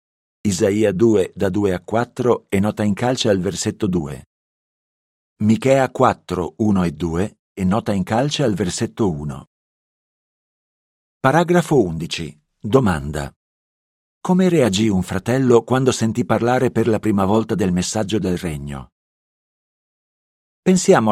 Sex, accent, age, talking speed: male, native, 50-69, 125 wpm